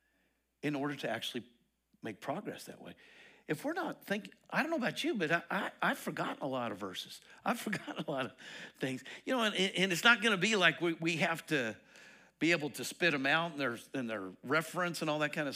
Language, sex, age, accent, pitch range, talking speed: English, male, 50-69, American, 145-195 Hz, 230 wpm